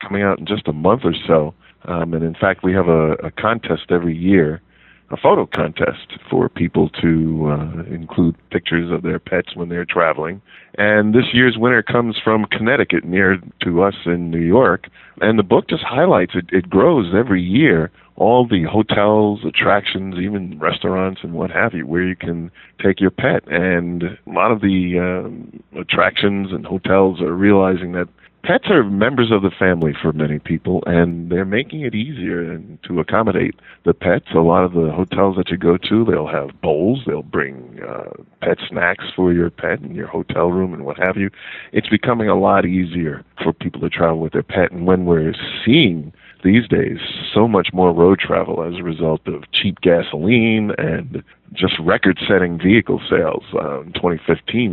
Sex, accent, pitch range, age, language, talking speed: male, American, 85-100 Hz, 50-69, English, 185 wpm